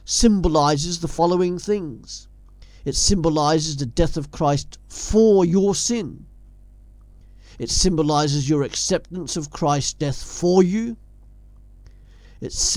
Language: English